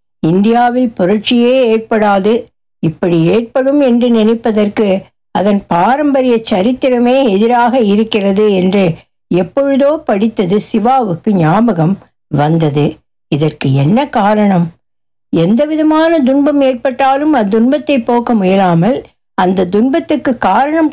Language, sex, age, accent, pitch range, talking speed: Tamil, female, 60-79, native, 190-265 Hz, 90 wpm